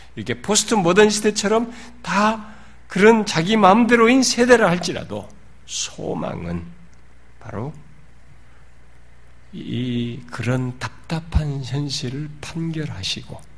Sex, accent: male, native